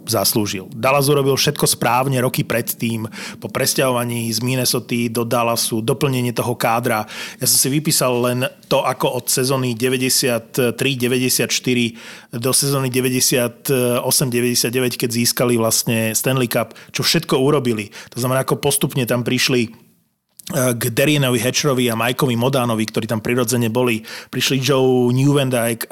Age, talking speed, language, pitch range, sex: 30-49, 130 wpm, Slovak, 120-145 Hz, male